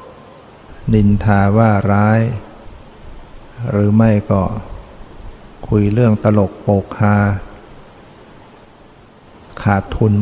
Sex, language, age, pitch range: male, Thai, 60-79, 100-115 Hz